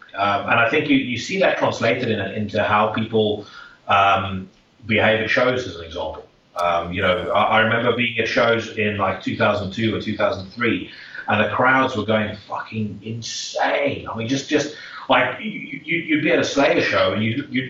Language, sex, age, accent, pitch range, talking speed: English, male, 30-49, British, 100-135 Hz, 190 wpm